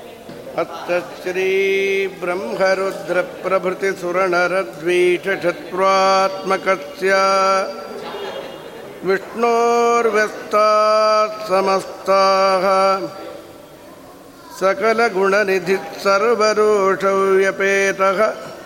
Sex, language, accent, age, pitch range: male, Kannada, native, 50-69, 195-230 Hz